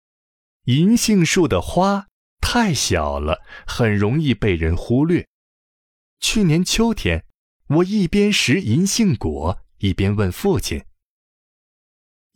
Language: Chinese